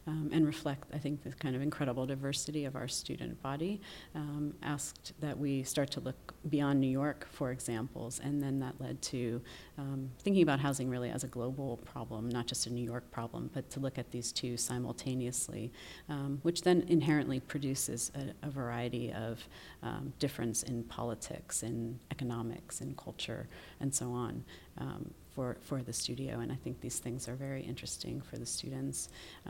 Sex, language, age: female, English, 40-59